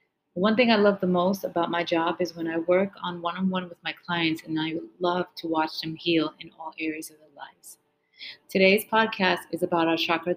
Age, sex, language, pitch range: 30-49, female, English, 170-195 Hz